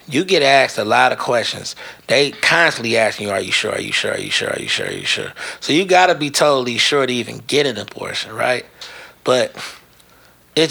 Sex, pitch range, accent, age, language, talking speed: male, 120-165 Hz, American, 30-49, English, 225 wpm